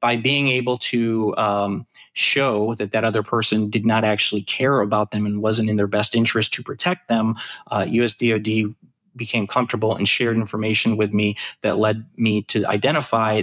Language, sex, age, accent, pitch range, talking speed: English, male, 30-49, American, 105-125 Hz, 175 wpm